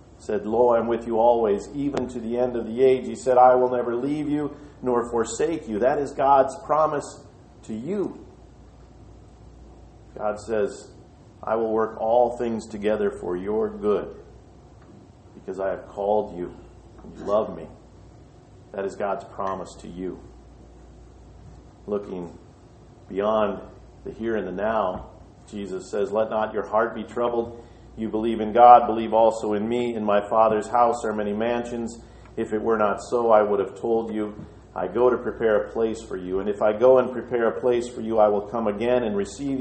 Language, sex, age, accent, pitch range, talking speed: English, male, 50-69, American, 105-120 Hz, 180 wpm